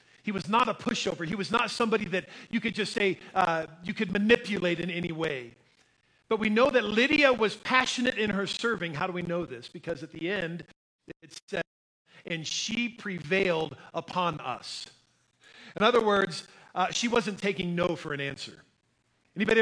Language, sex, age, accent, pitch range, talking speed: English, male, 40-59, American, 160-205 Hz, 180 wpm